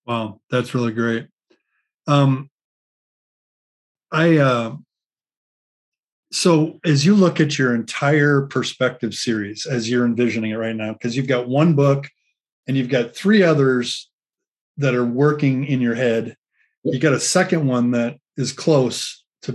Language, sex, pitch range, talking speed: English, male, 120-145 Hz, 145 wpm